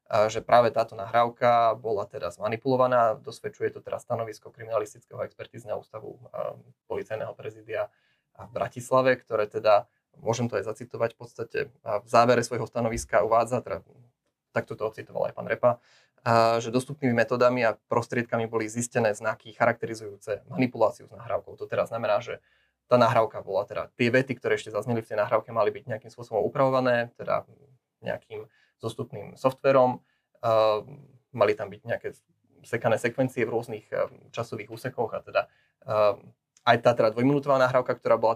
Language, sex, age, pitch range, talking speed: Slovak, male, 20-39, 115-130 Hz, 155 wpm